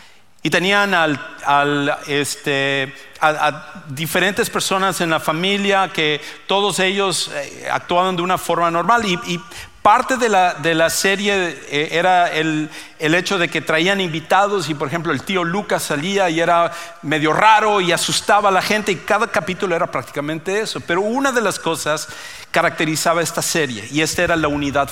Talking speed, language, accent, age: 170 wpm, English, Mexican, 50-69